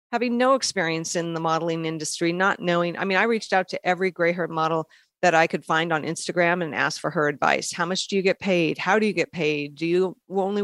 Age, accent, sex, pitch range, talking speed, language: 40-59, American, female, 160-190 Hz, 250 wpm, English